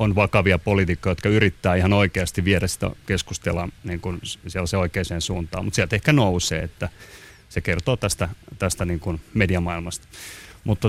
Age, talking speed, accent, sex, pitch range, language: 30-49, 145 wpm, native, male, 90-120 Hz, Finnish